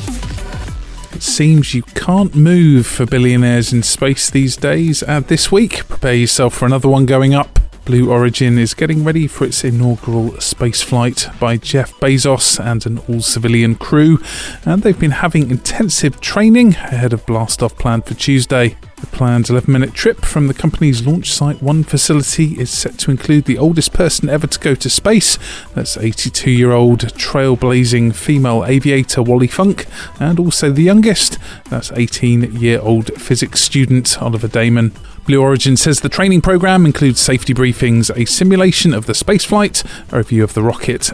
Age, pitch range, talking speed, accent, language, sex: 30-49, 115-150 Hz, 160 wpm, British, English, male